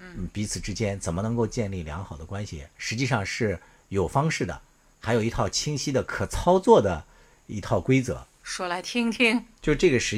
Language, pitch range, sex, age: Chinese, 95-135 Hz, male, 50-69